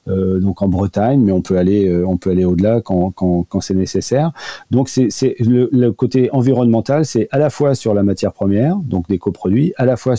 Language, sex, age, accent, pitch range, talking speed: French, male, 40-59, French, 95-120 Hz, 230 wpm